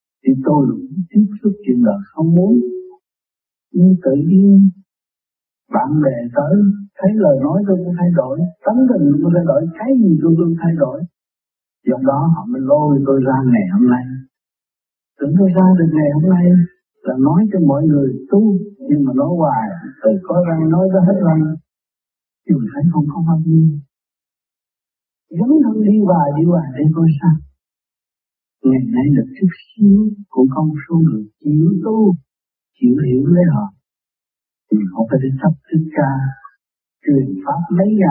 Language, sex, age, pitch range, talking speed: Vietnamese, male, 60-79, 140-195 Hz, 165 wpm